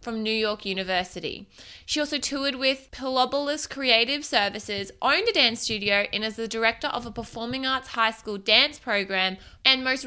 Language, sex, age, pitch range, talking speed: English, female, 20-39, 210-270 Hz, 175 wpm